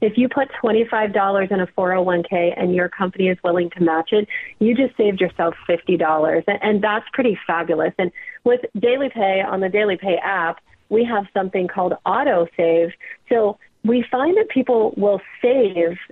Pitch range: 175-220 Hz